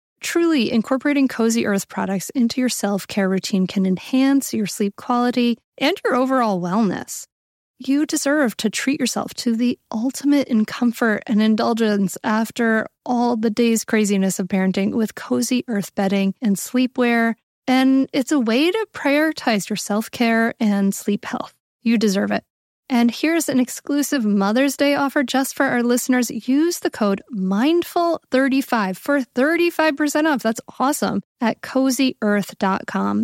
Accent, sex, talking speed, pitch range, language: American, female, 145 wpm, 200-265 Hz, English